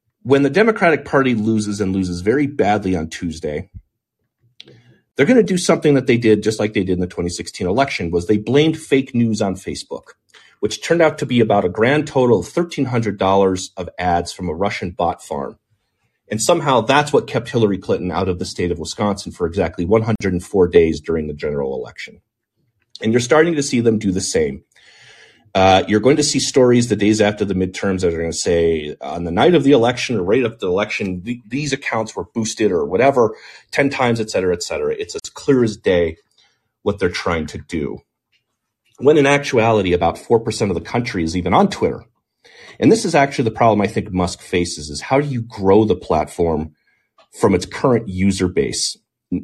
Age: 30-49